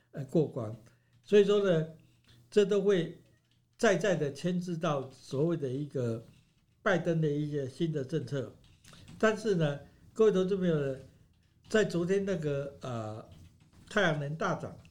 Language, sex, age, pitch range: Chinese, male, 60-79, 130-180 Hz